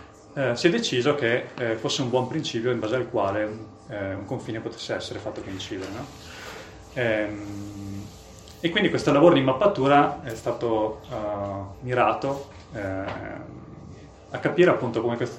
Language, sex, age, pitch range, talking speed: Italian, male, 30-49, 105-130 Hz, 150 wpm